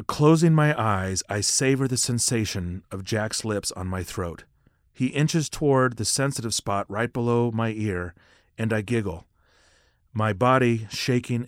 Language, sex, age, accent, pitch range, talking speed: English, male, 40-59, American, 100-130 Hz, 150 wpm